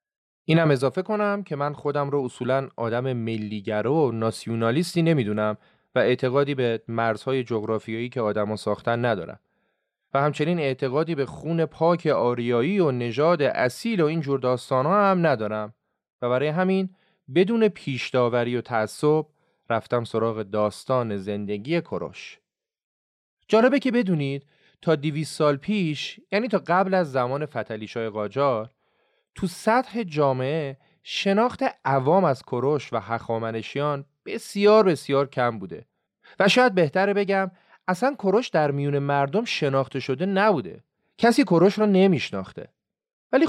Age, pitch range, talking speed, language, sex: 30-49, 120-190 Hz, 130 wpm, Persian, male